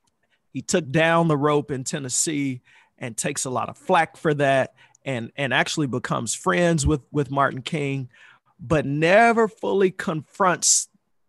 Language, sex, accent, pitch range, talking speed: English, male, American, 125-155 Hz, 150 wpm